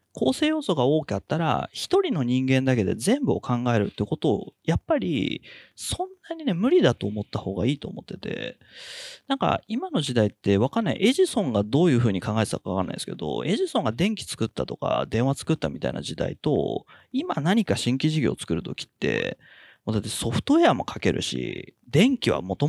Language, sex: Japanese, male